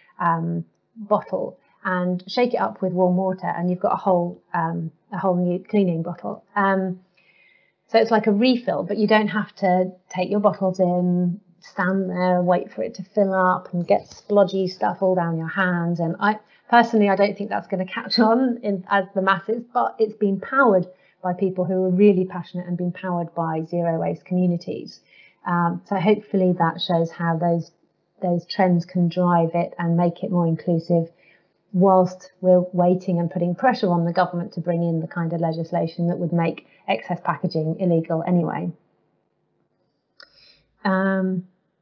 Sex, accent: female, British